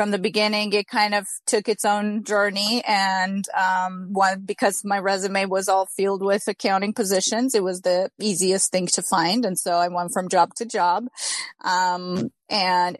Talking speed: 180 wpm